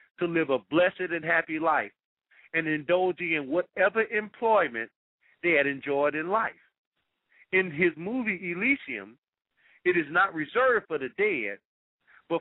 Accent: American